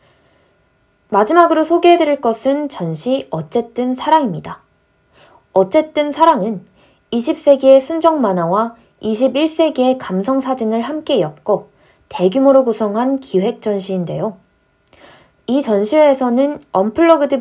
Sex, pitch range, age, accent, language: female, 190-275 Hz, 20-39, native, Korean